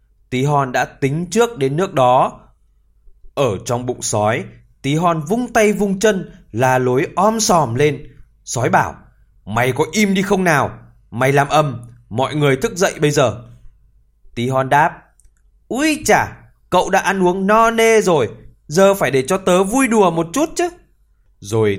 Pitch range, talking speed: 120-190 Hz, 175 wpm